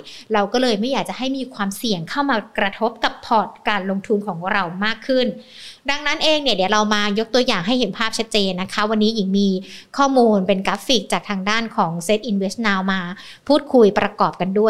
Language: Thai